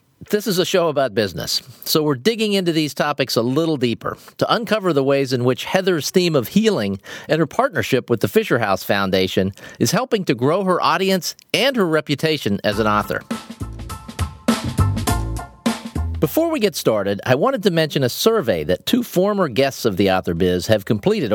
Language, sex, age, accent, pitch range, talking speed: English, male, 40-59, American, 115-180 Hz, 185 wpm